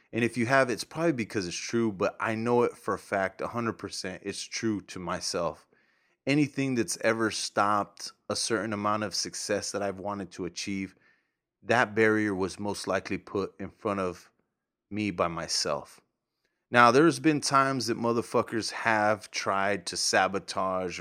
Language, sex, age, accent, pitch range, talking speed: English, male, 30-49, American, 100-115 Hz, 165 wpm